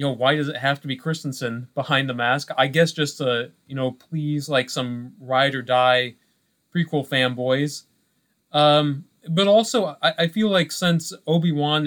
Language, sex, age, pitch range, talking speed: English, male, 20-39, 130-155 Hz, 175 wpm